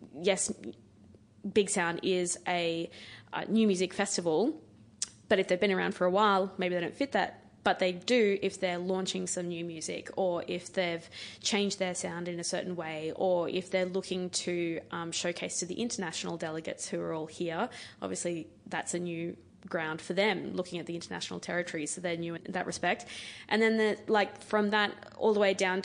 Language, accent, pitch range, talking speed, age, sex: English, Australian, 170-195 Hz, 195 wpm, 20-39, female